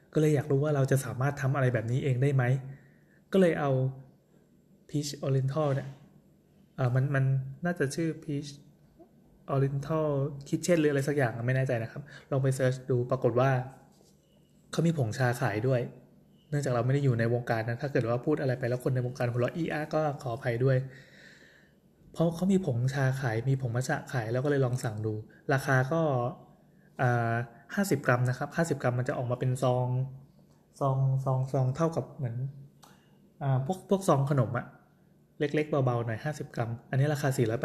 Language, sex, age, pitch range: Thai, male, 20-39, 125-150 Hz